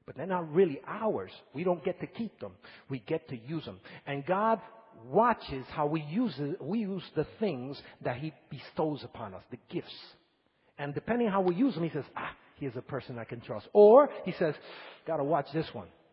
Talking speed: 215 wpm